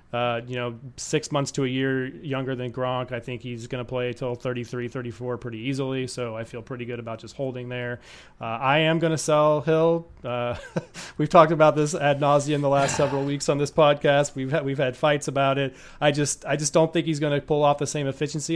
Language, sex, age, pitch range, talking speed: English, male, 30-49, 125-150 Hz, 240 wpm